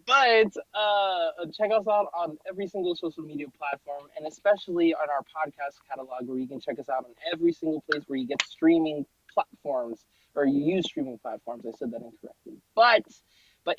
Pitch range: 145-205 Hz